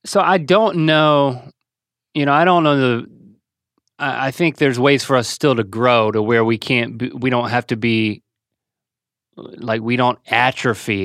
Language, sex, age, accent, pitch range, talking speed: English, male, 30-49, American, 110-130 Hz, 175 wpm